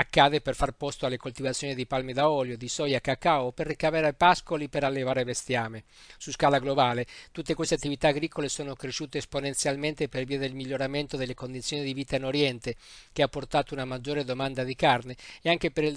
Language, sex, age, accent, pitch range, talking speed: Italian, male, 50-69, native, 130-155 Hz, 190 wpm